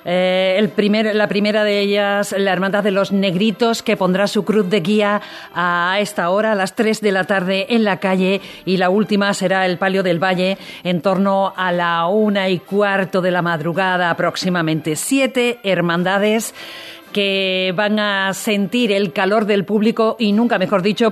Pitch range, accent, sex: 190-215 Hz, Spanish, female